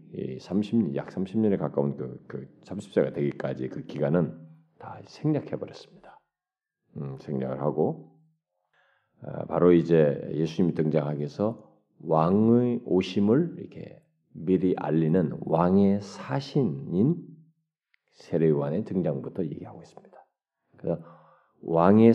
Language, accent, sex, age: Korean, native, male, 40-59